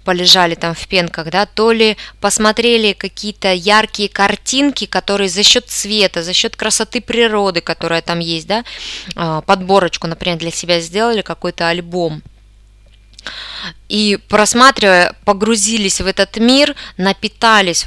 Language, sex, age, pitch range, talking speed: Russian, female, 20-39, 170-210 Hz, 125 wpm